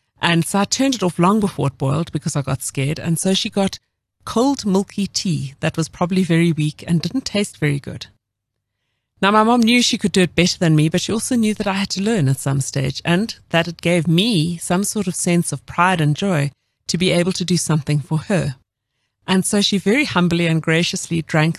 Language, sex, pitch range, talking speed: English, female, 145-195 Hz, 230 wpm